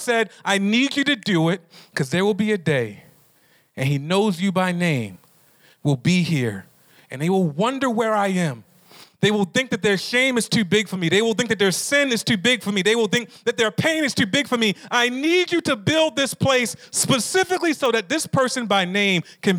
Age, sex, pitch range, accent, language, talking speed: 40-59, male, 145-220 Hz, American, English, 235 wpm